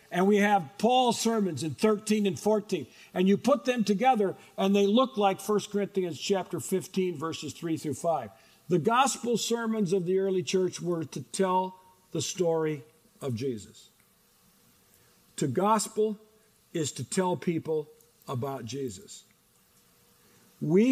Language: English